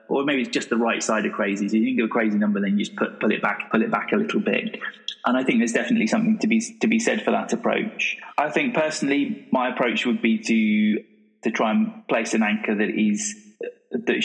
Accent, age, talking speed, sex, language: British, 20-39, 255 wpm, male, English